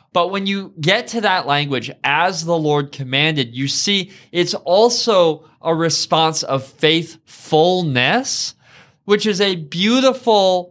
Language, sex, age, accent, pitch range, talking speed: English, male, 20-39, American, 130-175 Hz, 130 wpm